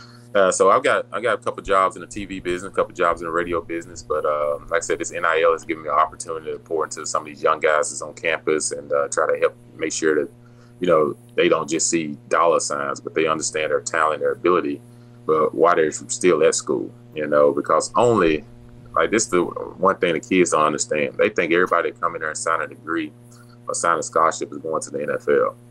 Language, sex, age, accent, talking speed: English, male, 30-49, American, 245 wpm